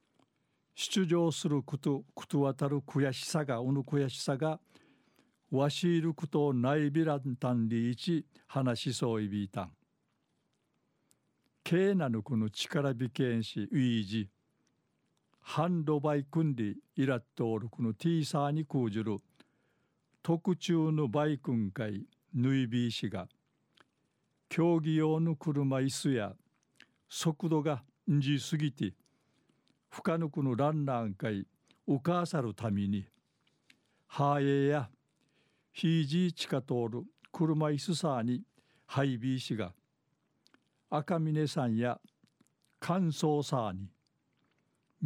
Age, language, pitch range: 50-69, Japanese, 125-155 Hz